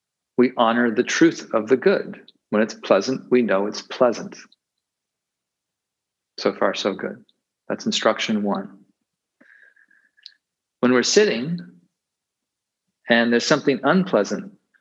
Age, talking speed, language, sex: 40-59, 115 wpm, English, male